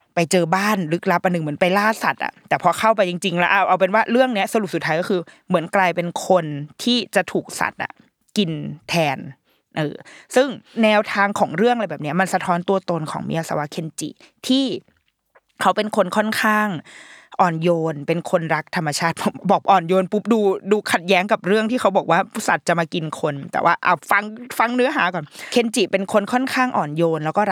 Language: Thai